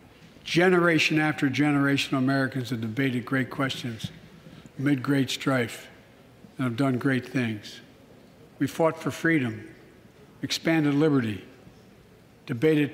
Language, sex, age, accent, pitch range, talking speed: English, male, 60-79, American, 130-180 Hz, 110 wpm